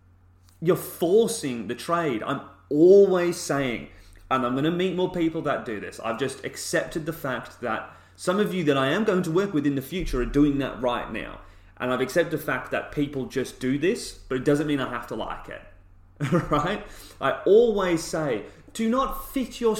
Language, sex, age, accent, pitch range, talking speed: English, male, 30-49, British, 115-165 Hz, 205 wpm